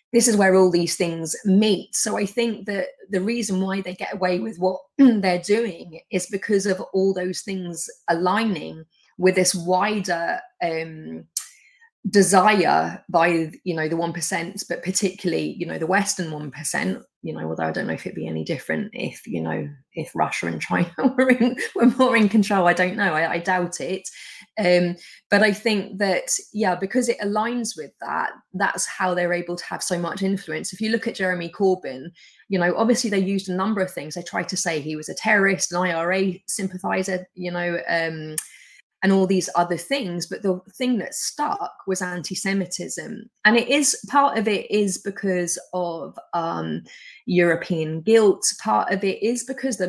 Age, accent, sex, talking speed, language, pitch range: 20-39, British, female, 185 wpm, English, 175-215 Hz